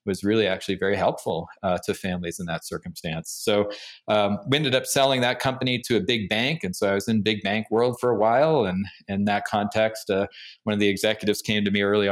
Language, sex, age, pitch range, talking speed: English, male, 40-59, 95-115 Hz, 235 wpm